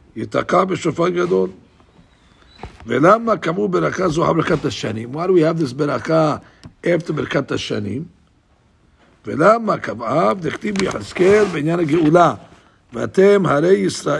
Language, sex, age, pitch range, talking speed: English, male, 60-79, 140-185 Hz, 65 wpm